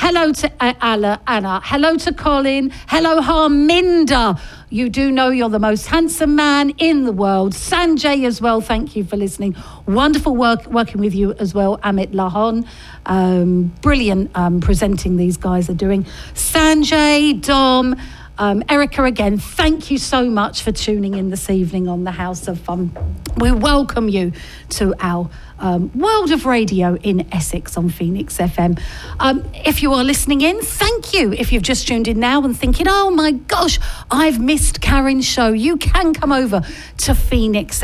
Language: English